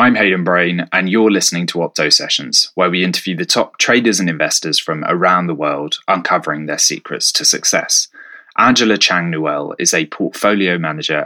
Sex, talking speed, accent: male, 170 wpm, British